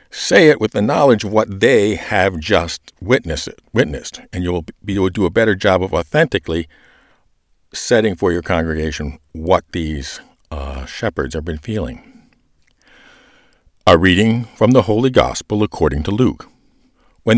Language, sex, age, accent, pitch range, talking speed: English, male, 50-69, American, 85-120 Hz, 140 wpm